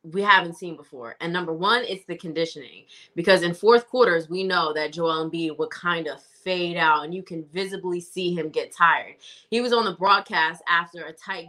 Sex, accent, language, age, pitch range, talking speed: female, American, English, 20-39, 170-210 Hz, 210 wpm